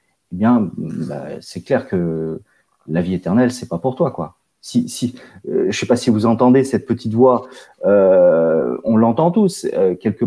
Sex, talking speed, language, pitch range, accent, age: male, 175 wpm, French, 115-170 Hz, French, 30-49